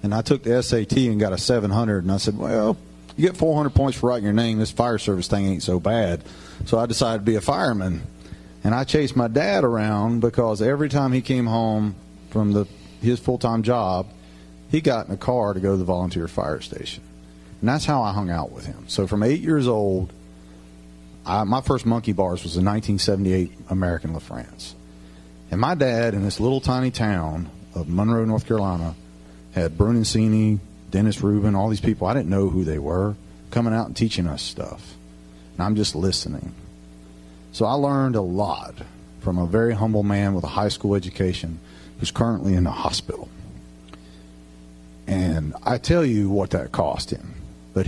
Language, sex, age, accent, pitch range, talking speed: English, male, 40-59, American, 75-115 Hz, 190 wpm